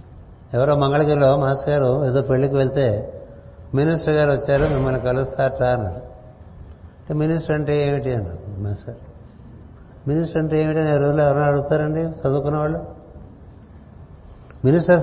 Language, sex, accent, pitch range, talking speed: Telugu, male, native, 115-145 Hz, 105 wpm